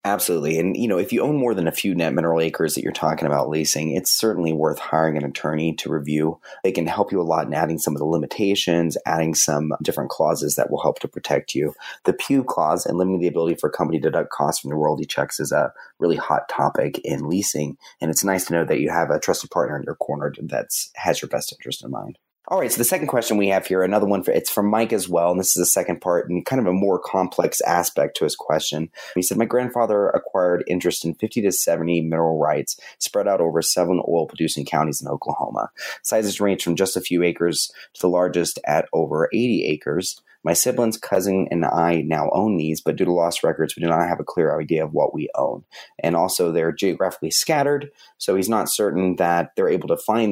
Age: 30-49